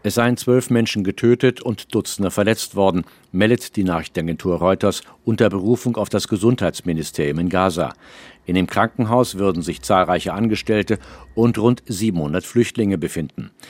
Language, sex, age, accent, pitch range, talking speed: German, male, 50-69, German, 90-110 Hz, 140 wpm